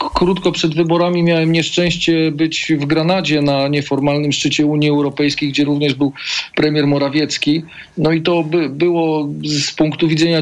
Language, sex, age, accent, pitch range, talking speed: Polish, male, 40-59, native, 135-155 Hz, 145 wpm